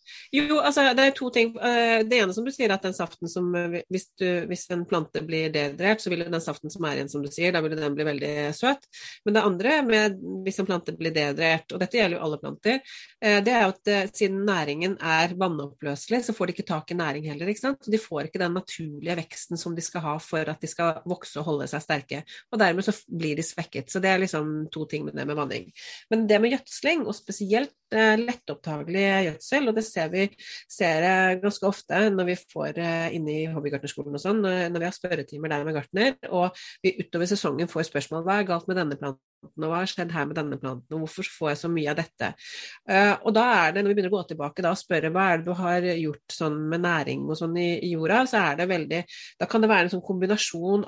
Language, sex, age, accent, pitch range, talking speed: English, female, 30-49, Swedish, 160-205 Hz, 240 wpm